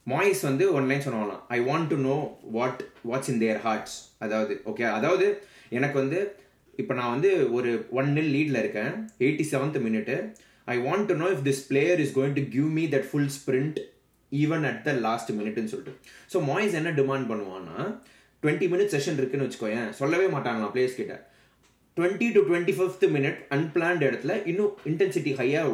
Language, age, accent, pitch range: Tamil, 20-39, native, 125-170 Hz